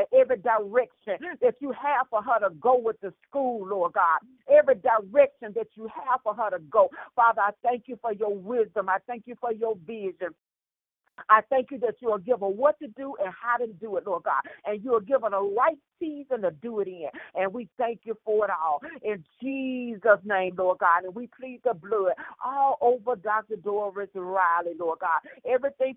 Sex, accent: female, American